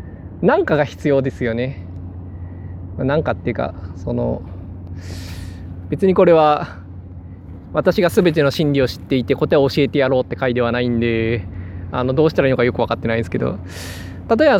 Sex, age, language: male, 20-39, Japanese